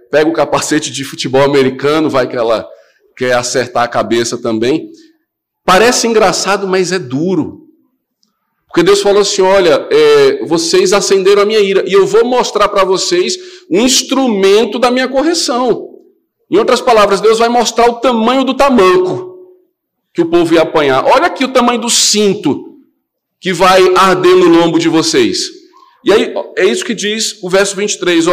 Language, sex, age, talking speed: Portuguese, male, 40-59, 165 wpm